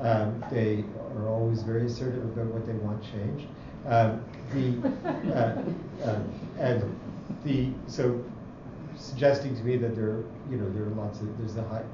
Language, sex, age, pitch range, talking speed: English, male, 50-69, 110-135 Hz, 120 wpm